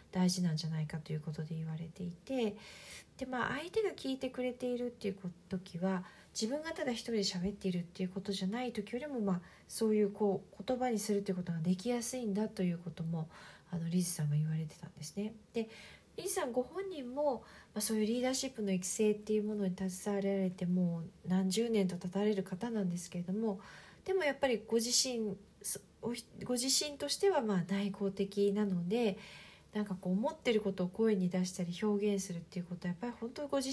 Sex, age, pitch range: female, 40-59, 185-240 Hz